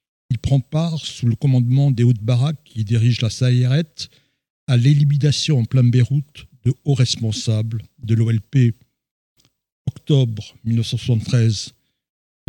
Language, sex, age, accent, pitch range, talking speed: French, male, 60-79, French, 115-140 Hz, 115 wpm